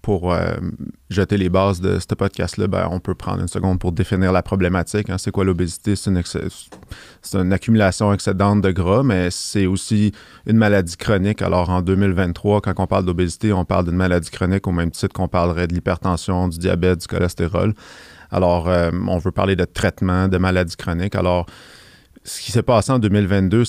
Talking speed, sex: 195 wpm, male